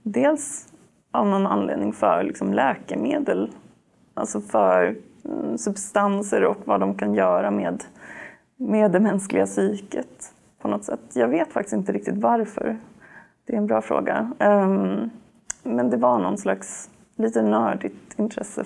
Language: Swedish